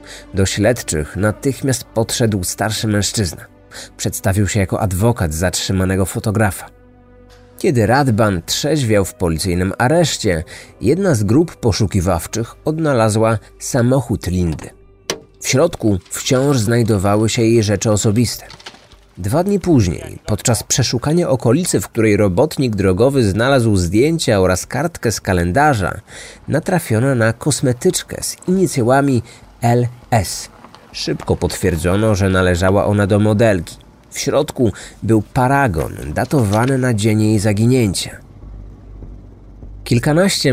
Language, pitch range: Polish, 100-125 Hz